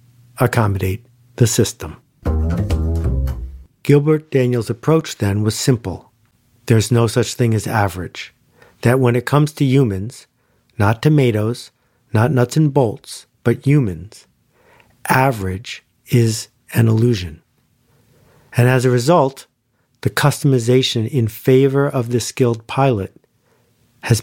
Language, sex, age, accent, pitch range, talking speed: English, male, 50-69, American, 110-130 Hz, 115 wpm